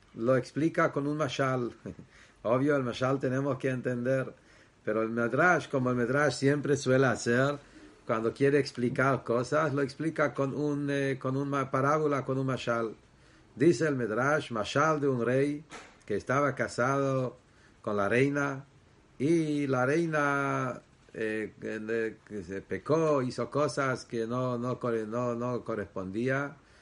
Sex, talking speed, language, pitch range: male, 145 wpm, English, 115-140 Hz